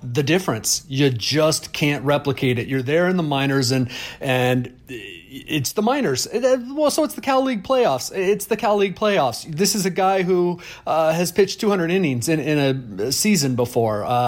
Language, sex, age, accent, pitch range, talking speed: English, male, 40-59, American, 125-160 Hz, 185 wpm